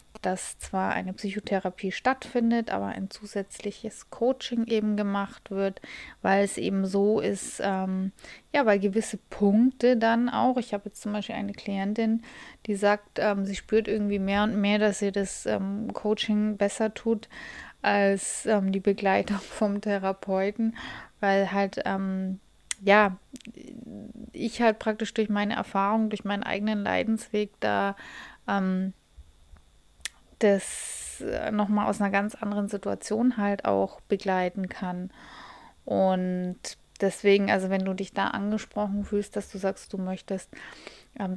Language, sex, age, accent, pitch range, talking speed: German, female, 20-39, German, 195-215 Hz, 140 wpm